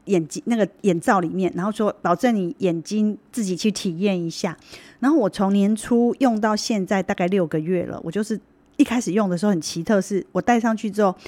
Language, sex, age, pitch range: Chinese, female, 30-49, 180-230 Hz